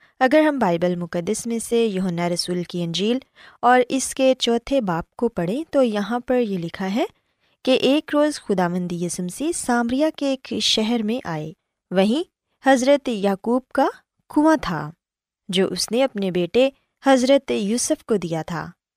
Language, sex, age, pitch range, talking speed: Urdu, female, 20-39, 185-275 Hz, 160 wpm